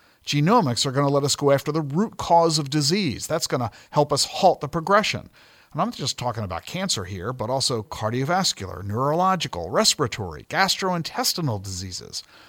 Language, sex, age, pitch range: English, male, 50-69, 120-155 Hz